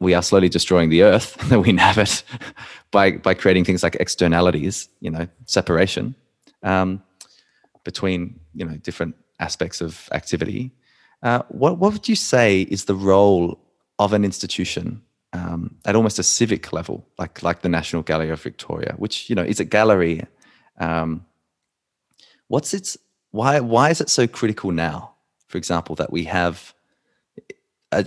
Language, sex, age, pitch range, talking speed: English, male, 20-39, 85-105 Hz, 155 wpm